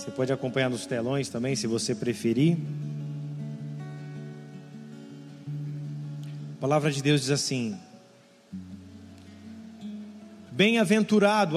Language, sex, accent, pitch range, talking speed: Portuguese, male, Brazilian, 145-195 Hz, 85 wpm